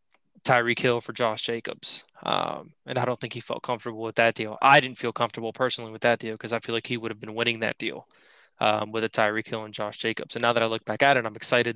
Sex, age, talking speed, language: male, 20-39, 270 wpm, English